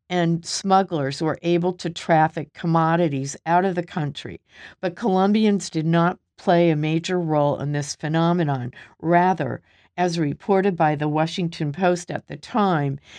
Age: 50-69